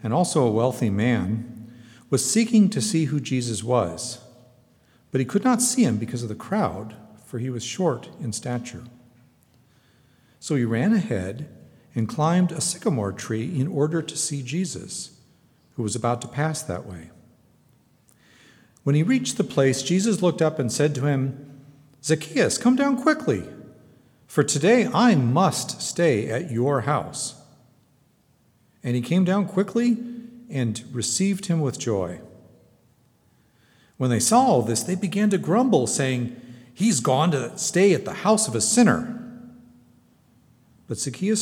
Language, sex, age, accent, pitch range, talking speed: English, male, 50-69, American, 120-175 Hz, 150 wpm